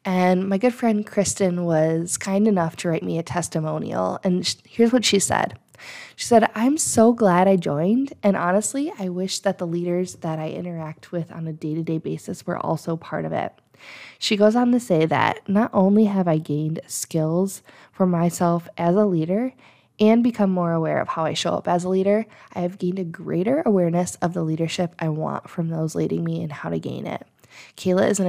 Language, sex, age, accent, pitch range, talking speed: English, female, 20-39, American, 165-200 Hz, 205 wpm